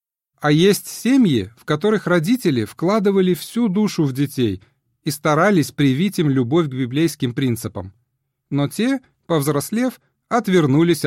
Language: Russian